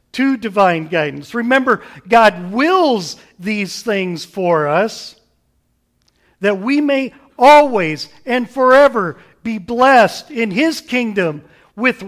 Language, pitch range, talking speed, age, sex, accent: English, 155-250 Hz, 110 wpm, 50-69, male, American